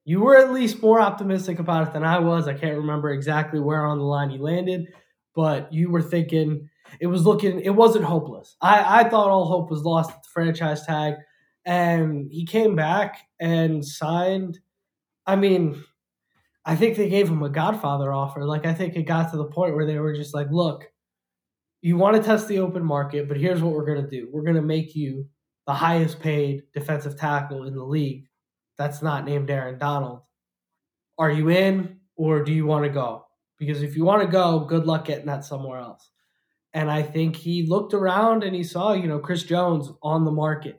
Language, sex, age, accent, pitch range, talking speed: English, male, 10-29, American, 150-180 Hz, 205 wpm